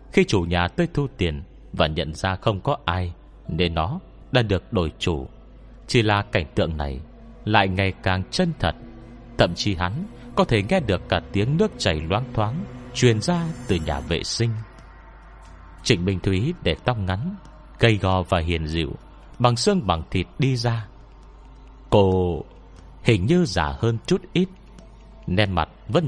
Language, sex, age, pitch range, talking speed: Vietnamese, male, 30-49, 85-120 Hz, 170 wpm